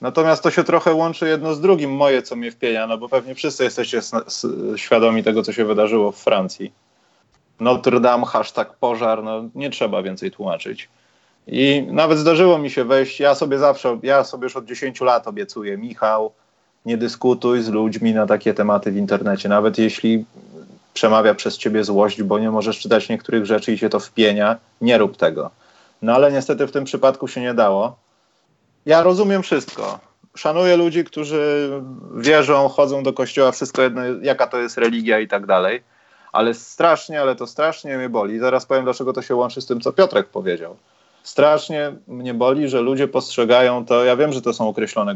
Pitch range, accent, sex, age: 110-145 Hz, native, male, 30-49